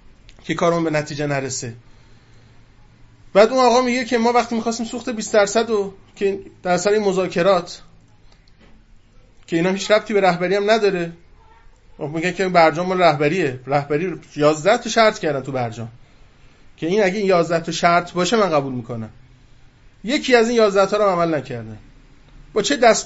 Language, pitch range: Persian, 140-215 Hz